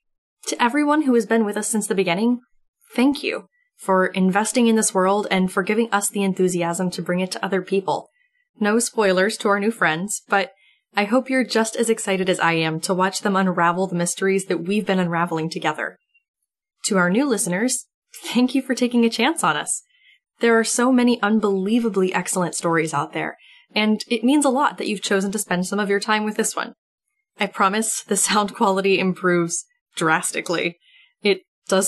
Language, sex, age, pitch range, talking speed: English, female, 10-29, 185-230 Hz, 195 wpm